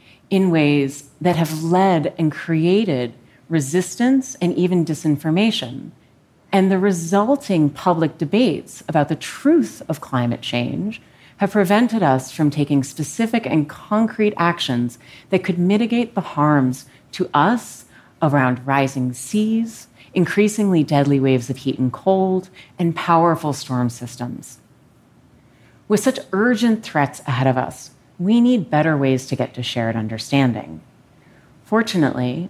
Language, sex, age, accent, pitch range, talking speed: English, female, 40-59, American, 135-190 Hz, 125 wpm